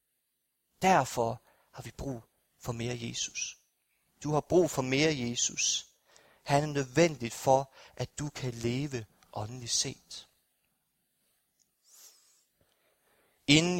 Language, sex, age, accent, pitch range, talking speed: Danish, male, 30-49, native, 135-180 Hz, 105 wpm